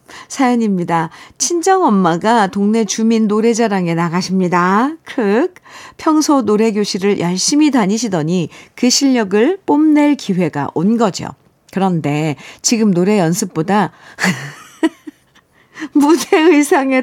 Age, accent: 50-69, native